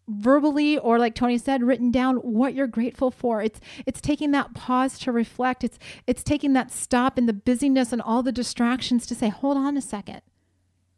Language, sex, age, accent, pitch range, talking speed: English, female, 30-49, American, 215-270 Hz, 195 wpm